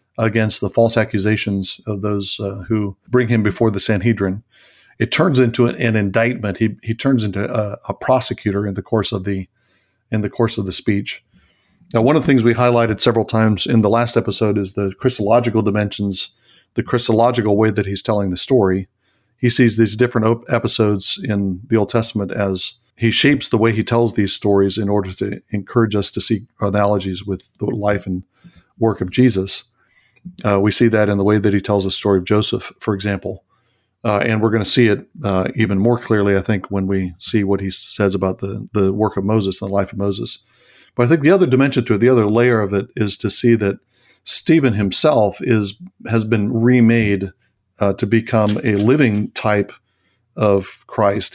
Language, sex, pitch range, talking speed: English, male, 100-115 Hz, 200 wpm